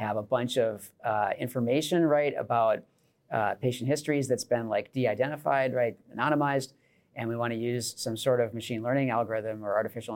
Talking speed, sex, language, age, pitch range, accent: 175 wpm, male, English, 40-59, 110-140 Hz, American